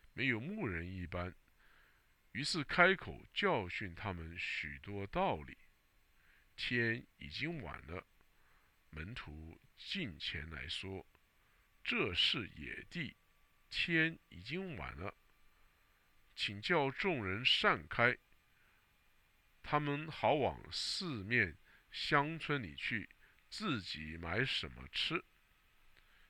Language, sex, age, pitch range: English, male, 50-69, 85-120 Hz